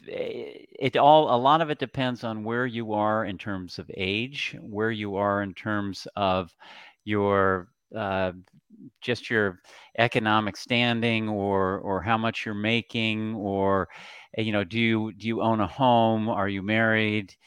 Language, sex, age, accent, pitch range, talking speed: English, male, 50-69, American, 100-120 Hz, 160 wpm